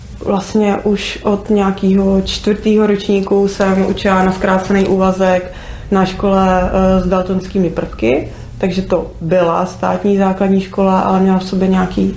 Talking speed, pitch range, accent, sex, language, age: 135 wpm, 190-205 Hz, native, female, Czech, 30-49